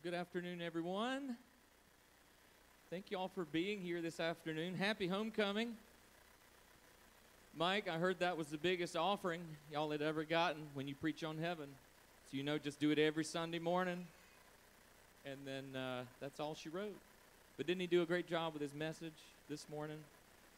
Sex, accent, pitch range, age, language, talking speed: male, American, 120-175 Hz, 40-59, English, 170 wpm